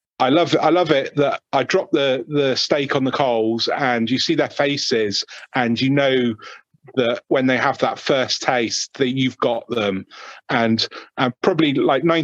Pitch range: 115-140 Hz